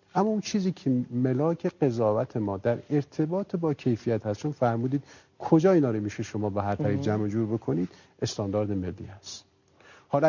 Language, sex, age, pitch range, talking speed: Persian, male, 50-69, 105-140 Hz, 165 wpm